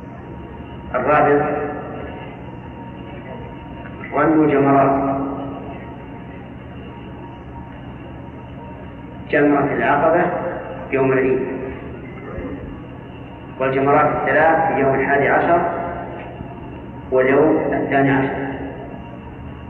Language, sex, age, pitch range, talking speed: Arabic, male, 40-59, 125-150 Hz, 50 wpm